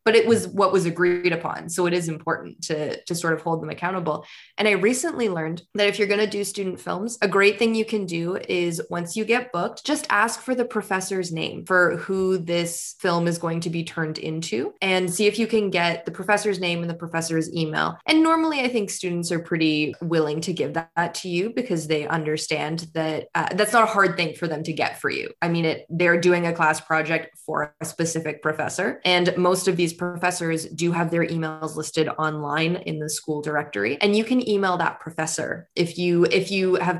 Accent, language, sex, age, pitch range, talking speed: American, English, female, 20-39, 160-185 Hz, 220 wpm